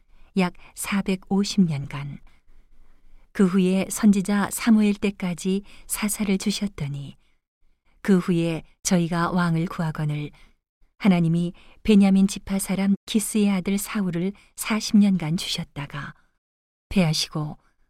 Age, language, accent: 40-59, Korean, native